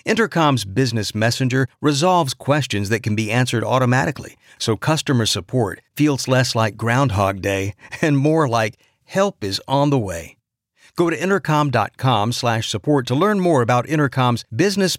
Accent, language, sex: American, English, male